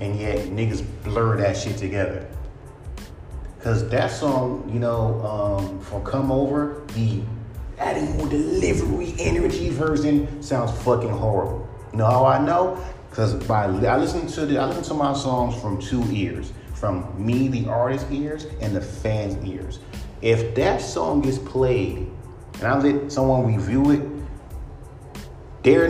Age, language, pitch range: 30-49, English, 100-130 Hz